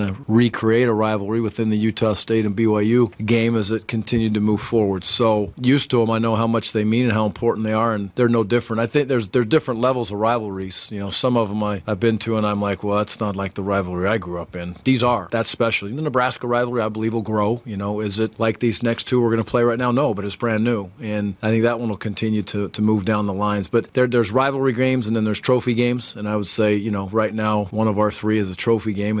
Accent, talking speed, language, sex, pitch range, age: American, 280 wpm, English, male, 100-115 Hz, 40-59